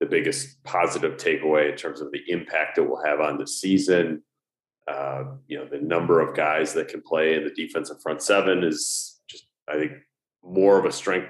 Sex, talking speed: male, 200 wpm